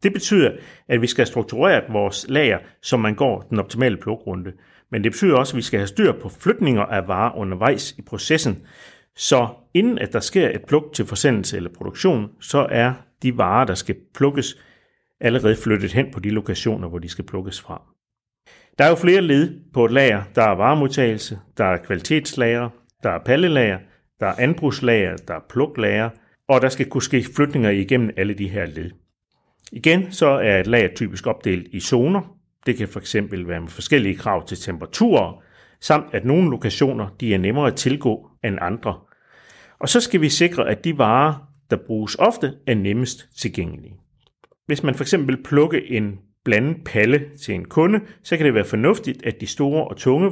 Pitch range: 105-145 Hz